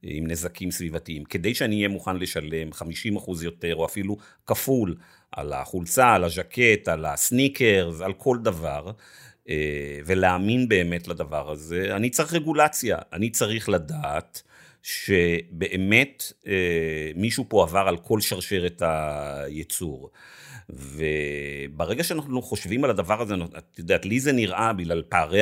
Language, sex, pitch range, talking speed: Hebrew, male, 85-115 Hz, 125 wpm